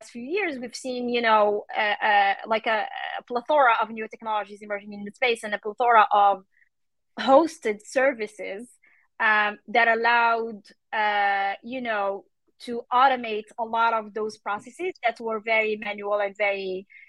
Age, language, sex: 20-39, English, female